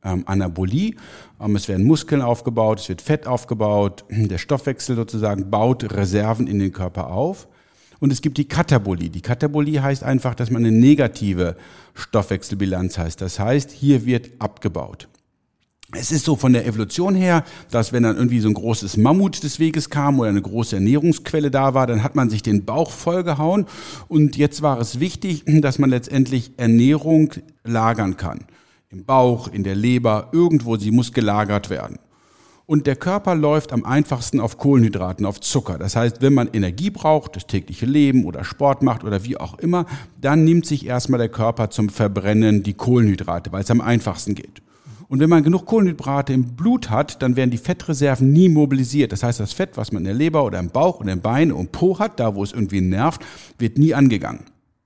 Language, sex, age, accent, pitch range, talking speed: German, male, 50-69, German, 105-145 Hz, 185 wpm